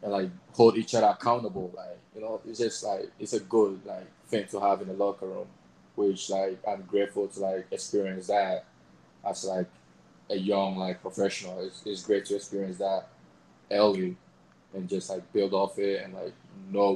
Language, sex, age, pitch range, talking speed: English, male, 20-39, 95-110 Hz, 190 wpm